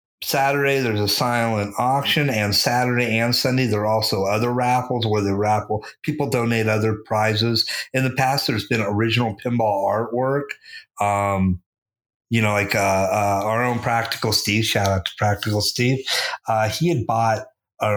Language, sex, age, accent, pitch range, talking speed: English, male, 50-69, American, 100-120 Hz, 165 wpm